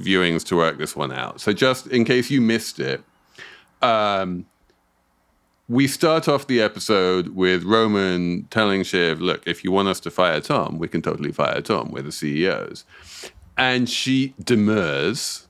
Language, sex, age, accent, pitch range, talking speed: English, male, 30-49, British, 90-125 Hz, 165 wpm